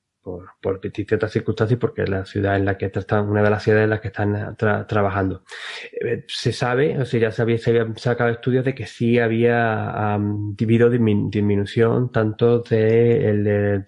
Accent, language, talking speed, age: Spanish, Spanish, 195 wpm, 20-39